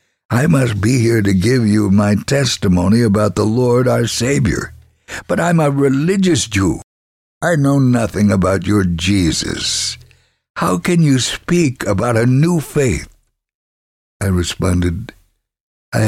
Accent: American